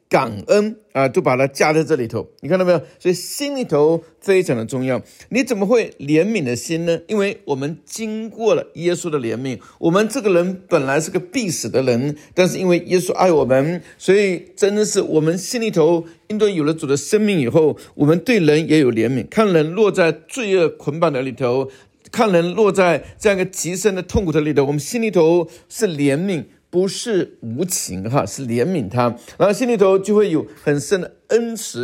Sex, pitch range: male, 145-200 Hz